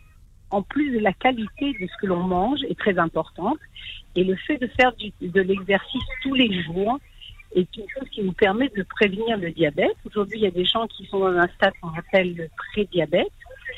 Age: 60-79